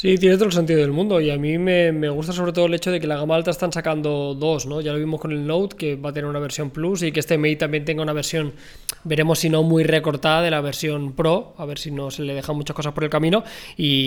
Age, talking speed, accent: 20-39, 295 wpm, Spanish